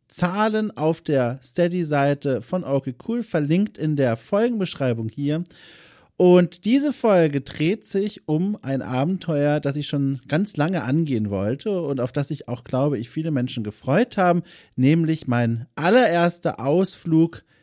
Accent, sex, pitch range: German, male, 135-180 Hz